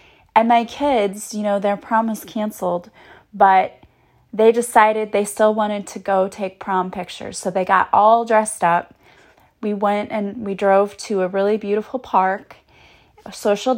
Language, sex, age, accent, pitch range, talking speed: English, female, 20-39, American, 190-220 Hz, 160 wpm